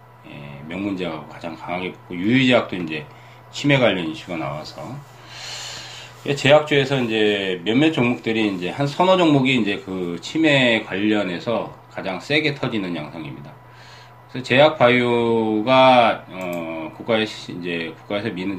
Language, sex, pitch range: Korean, male, 90-125 Hz